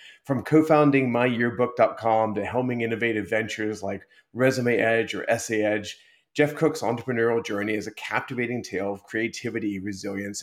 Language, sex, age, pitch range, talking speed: English, male, 30-49, 105-140 Hz, 140 wpm